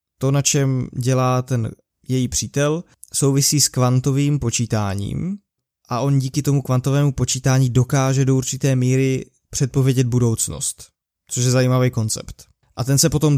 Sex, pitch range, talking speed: male, 125-140 Hz, 140 wpm